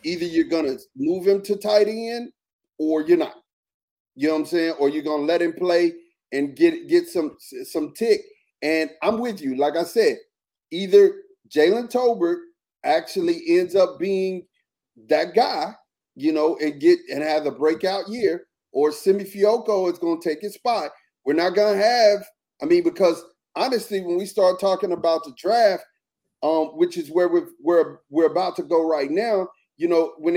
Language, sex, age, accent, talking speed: English, male, 40-59, American, 180 wpm